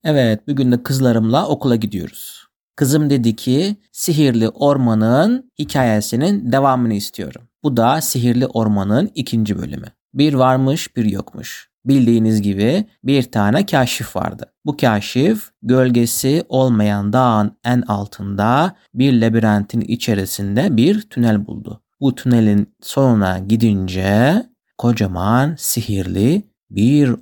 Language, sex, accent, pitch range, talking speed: Turkish, male, native, 105-140 Hz, 110 wpm